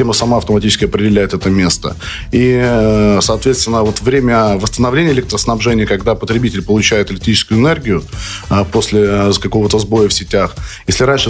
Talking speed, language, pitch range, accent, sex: 120 wpm, Russian, 105-125 Hz, native, male